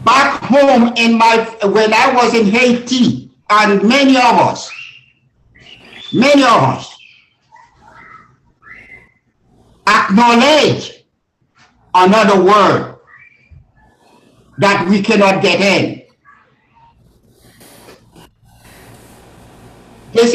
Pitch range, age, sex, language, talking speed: 200-270 Hz, 60-79, male, English, 75 wpm